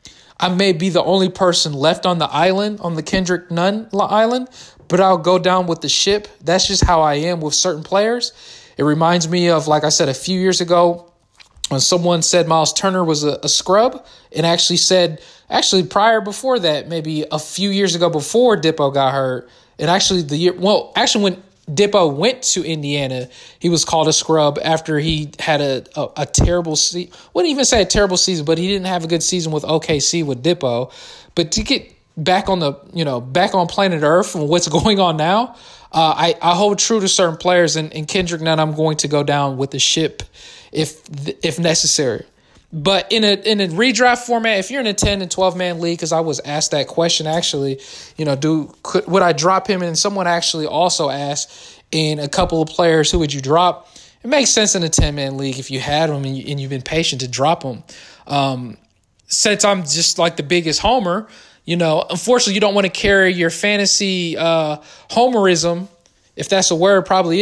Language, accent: English, American